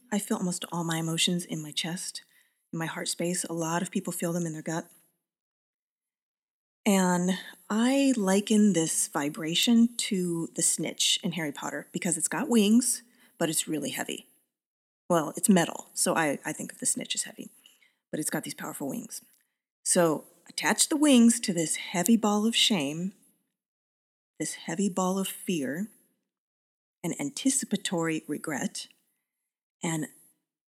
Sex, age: female, 30-49